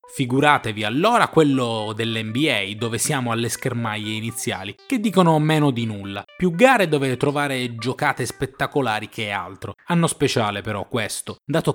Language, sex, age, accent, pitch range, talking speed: Italian, male, 20-39, native, 110-150 Hz, 140 wpm